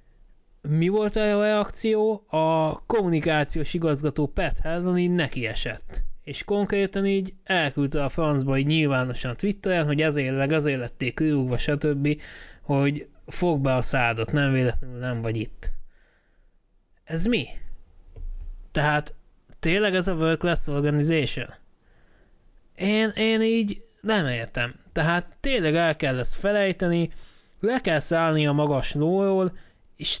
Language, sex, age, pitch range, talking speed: Hungarian, male, 20-39, 130-180 Hz, 125 wpm